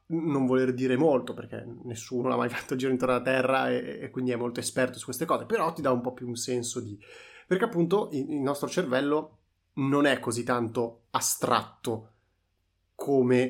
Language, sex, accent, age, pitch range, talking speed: Italian, male, native, 30-49, 115-130 Hz, 185 wpm